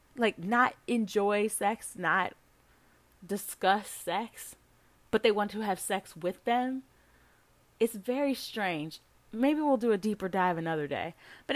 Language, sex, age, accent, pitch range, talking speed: English, female, 30-49, American, 160-210 Hz, 140 wpm